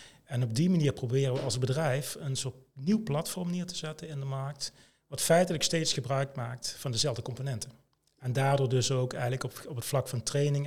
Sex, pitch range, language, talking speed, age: male, 125-150 Hz, Dutch, 210 wpm, 40-59